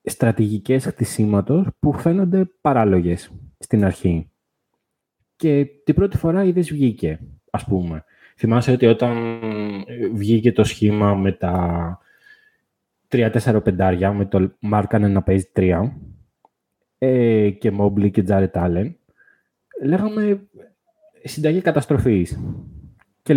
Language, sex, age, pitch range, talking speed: Greek, male, 20-39, 105-165 Hz, 100 wpm